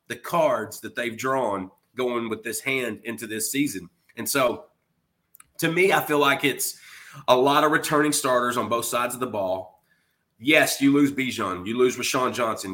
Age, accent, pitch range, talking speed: 30-49, American, 115-145 Hz, 185 wpm